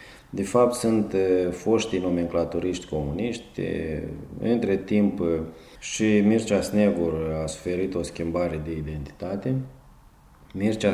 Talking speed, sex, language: 100 wpm, male, Romanian